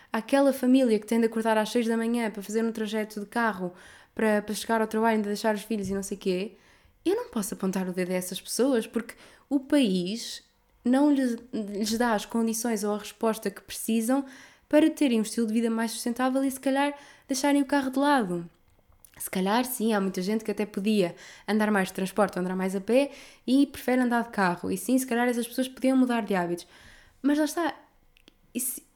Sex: female